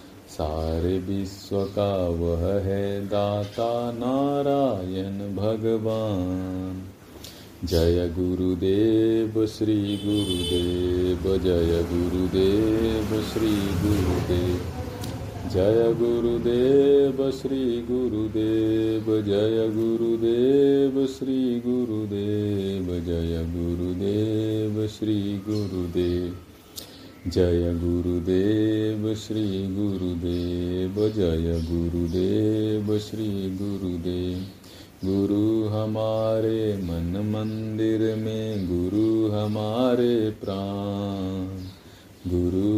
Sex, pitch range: male, 90-110 Hz